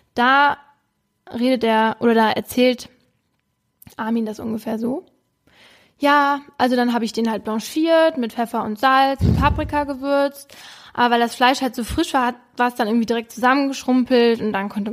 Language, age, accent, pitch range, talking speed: German, 10-29, German, 220-255 Hz, 170 wpm